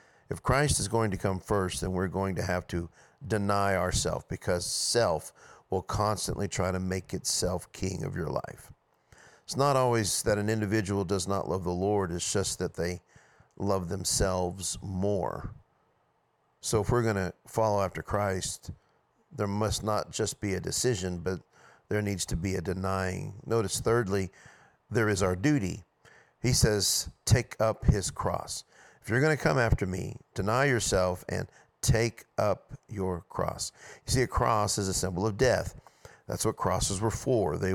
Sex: male